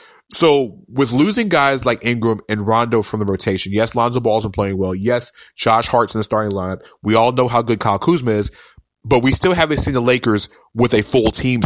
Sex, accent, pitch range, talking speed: male, American, 100-125 Hz, 220 wpm